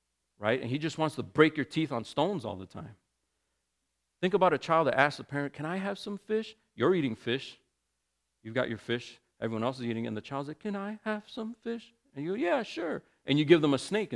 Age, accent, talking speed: 40-59, American, 250 wpm